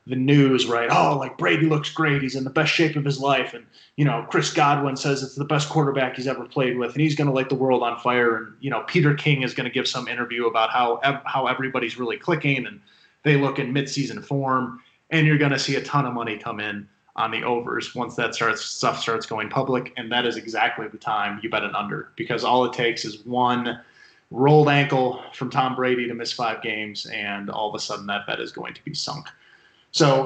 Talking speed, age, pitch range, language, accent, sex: 240 wpm, 20-39, 115-140 Hz, English, American, male